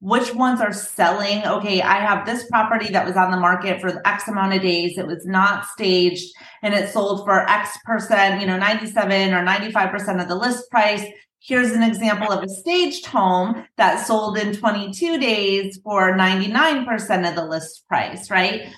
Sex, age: female, 30-49